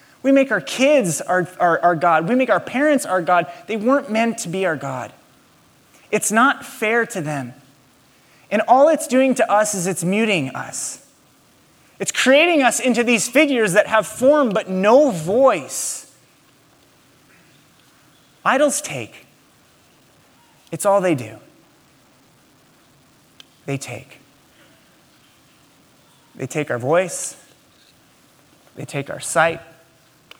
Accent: American